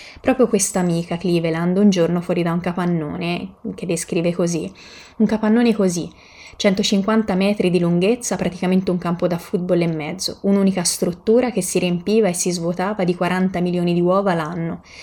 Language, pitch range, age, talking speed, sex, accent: Italian, 170-195 Hz, 20-39, 165 wpm, female, native